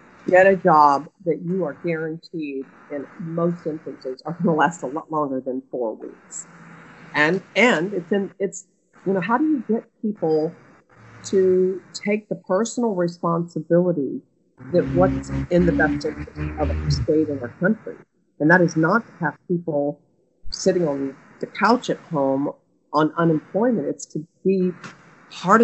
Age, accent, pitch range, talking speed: 50-69, American, 155-205 Hz, 155 wpm